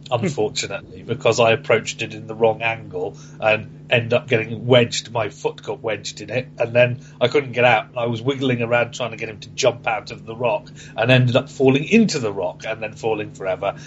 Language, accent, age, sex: English, British, 40-59, male